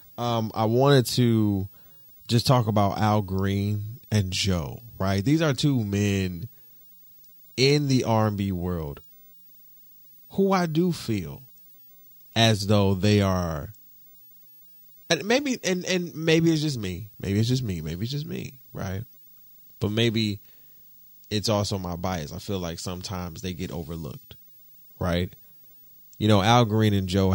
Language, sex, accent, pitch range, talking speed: English, male, American, 90-110 Hz, 145 wpm